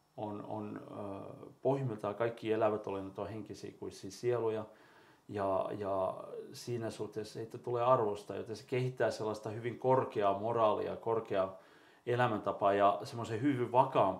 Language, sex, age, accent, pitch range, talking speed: Finnish, male, 40-59, native, 100-125 Hz, 130 wpm